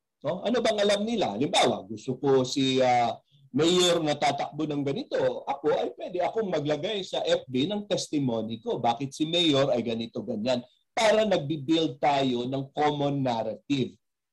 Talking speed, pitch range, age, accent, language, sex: 145 wpm, 130-175 Hz, 40-59, native, Filipino, male